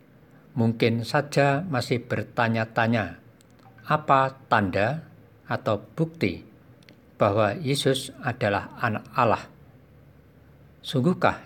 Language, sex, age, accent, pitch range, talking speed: Indonesian, male, 50-69, native, 110-135 Hz, 75 wpm